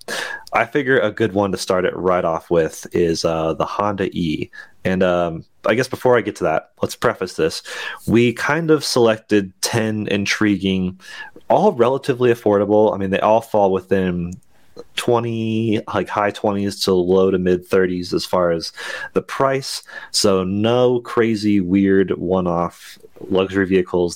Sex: male